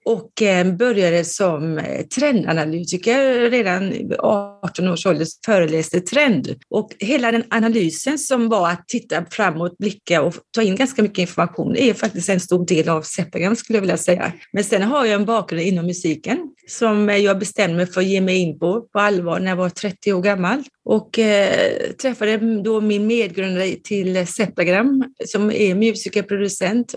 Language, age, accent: Swedish, 30-49, native